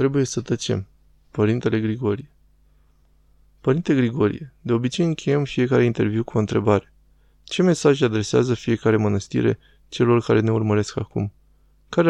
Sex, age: male, 20-39